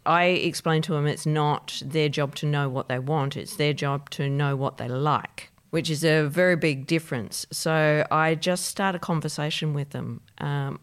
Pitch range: 140-160 Hz